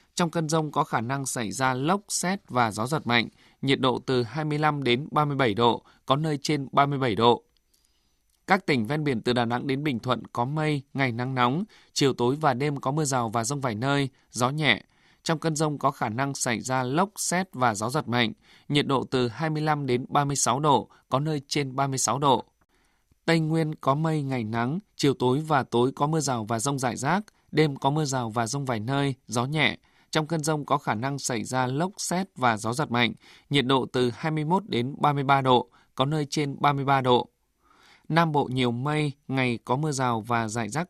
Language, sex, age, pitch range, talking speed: Vietnamese, male, 20-39, 125-155 Hz, 220 wpm